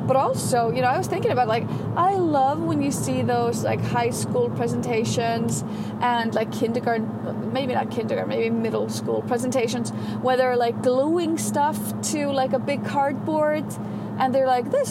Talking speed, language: 175 wpm, English